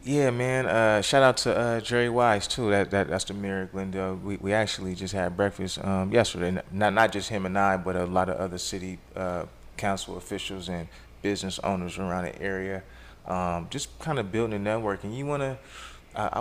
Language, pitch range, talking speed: English, 90-100 Hz, 205 wpm